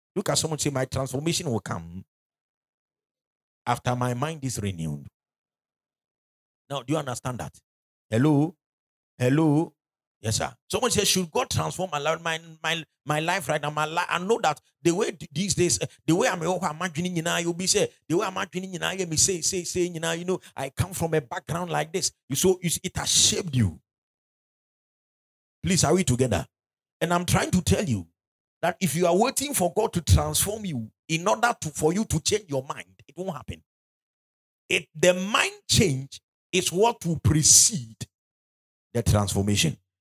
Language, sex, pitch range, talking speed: English, male, 120-175 Hz, 180 wpm